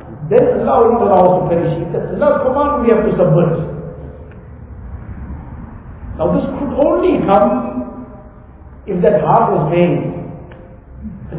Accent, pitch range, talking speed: Indian, 125-210 Hz, 120 wpm